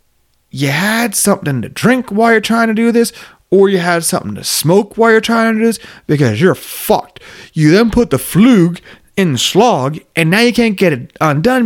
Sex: male